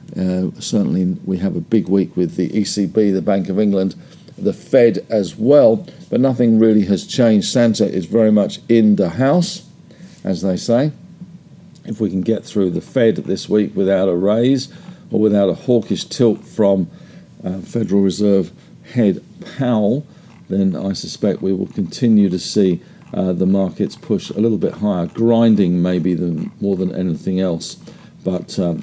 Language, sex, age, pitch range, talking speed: English, male, 50-69, 95-120 Hz, 165 wpm